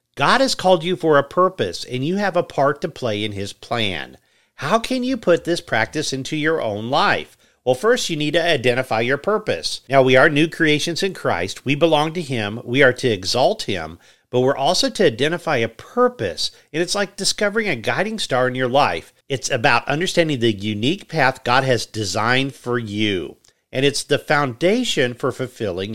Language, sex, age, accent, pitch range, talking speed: English, male, 50-69, American, 125-175 Hz, 195 wpm